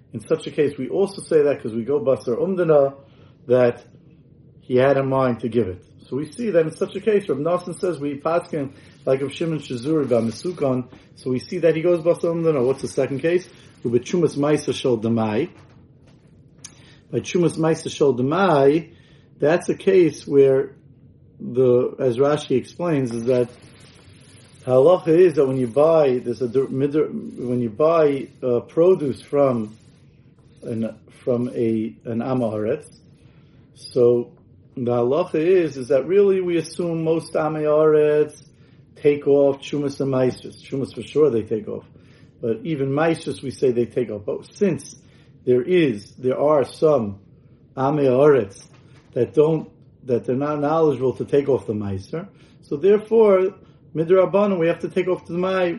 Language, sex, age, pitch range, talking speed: English, male, 40-59, 125-160 Hz, 155 wpm